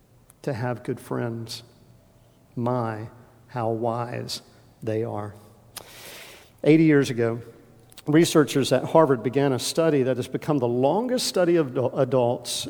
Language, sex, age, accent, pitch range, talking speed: English, male, 50-69, American, 125-165 Hz, 125 wpm